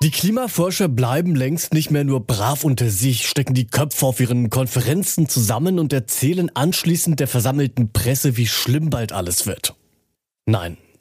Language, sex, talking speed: German, male, 160 wpm